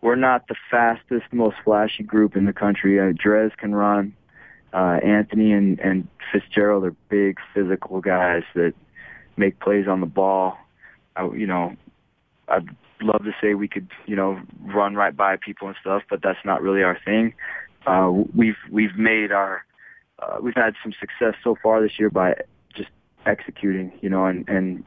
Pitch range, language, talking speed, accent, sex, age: 95-110 Hz, English, 175 wpm, American, male, 20-39